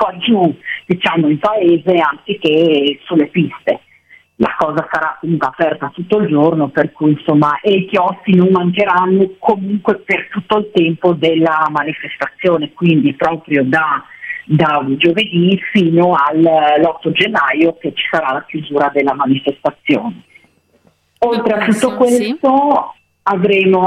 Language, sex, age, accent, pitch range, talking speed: Italian, female, 40-59, native, 150-190 Hz, 130 wpm